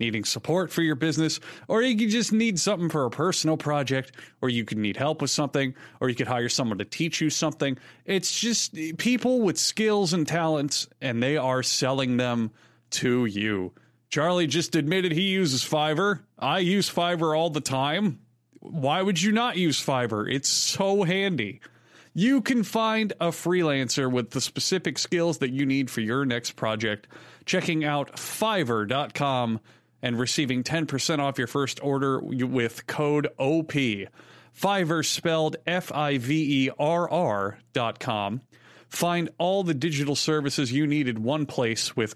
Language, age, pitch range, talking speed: English, 30-49, 125-165 Hz, 160 wpm